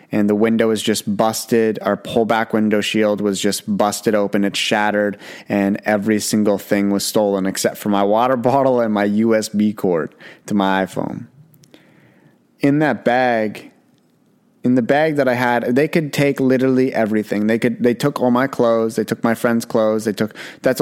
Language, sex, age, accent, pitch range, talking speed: English, male, 30-49, American, 105-125 Hz, 180 wpm